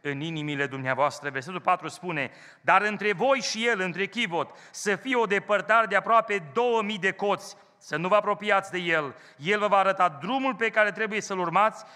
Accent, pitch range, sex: native, 190-240 Hz, male